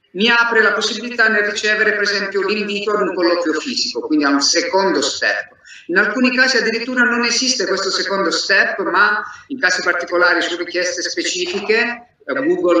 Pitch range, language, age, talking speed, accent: 165-240 Hz, Italian, 50-69, 165 wpm, native